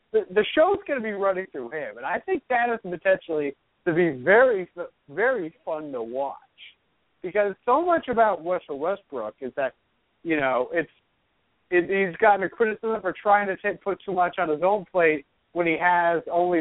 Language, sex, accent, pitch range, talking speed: English, male, American, 150-210 Hz, 190 wpm